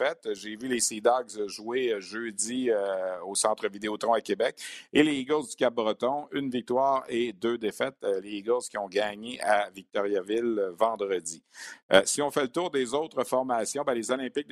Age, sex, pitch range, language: 50-69, male, 110-135 Hz, French